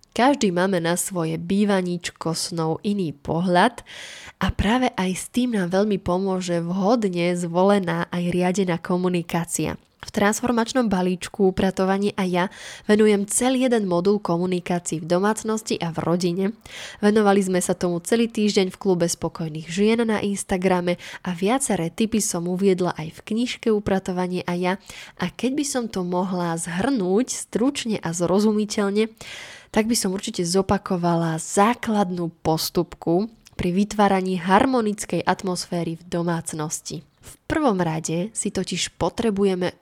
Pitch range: 175-210 Hz